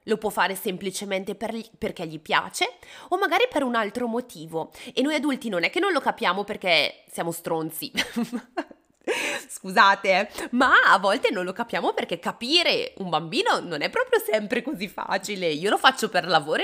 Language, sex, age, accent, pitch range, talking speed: Italian, female, 20-39, native, 210-290 Hz, 170 wpm